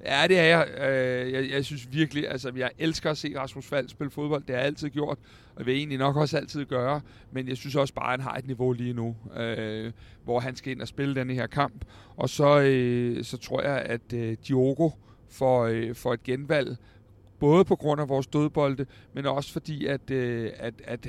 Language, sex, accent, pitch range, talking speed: Danish, male, native, 120-145 Hz, 200 wpm